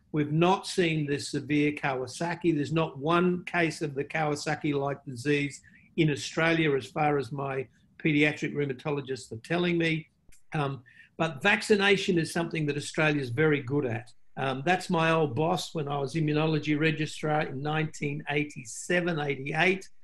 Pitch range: 145-170 Hz